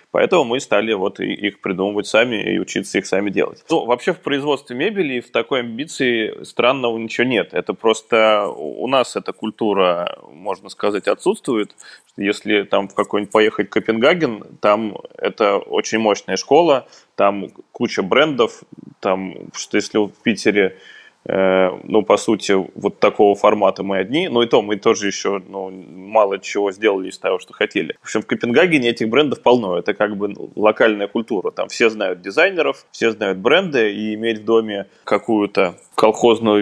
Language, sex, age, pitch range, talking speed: Russian, male, 20-39, 100-115 Hz, 160 wpm